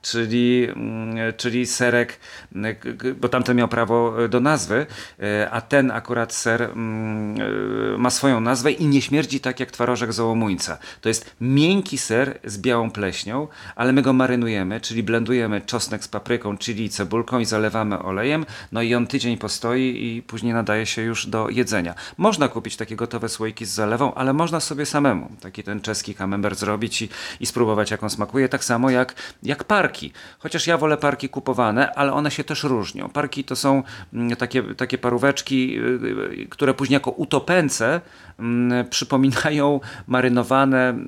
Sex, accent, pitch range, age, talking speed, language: male, native, 110-130 Hz, 40-59, 155 wpm, Polish